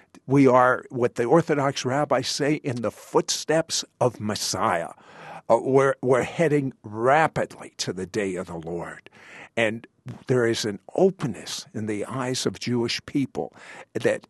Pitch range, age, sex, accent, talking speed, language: 100-140 Hz, 50-69, male, American, 145 wpm, English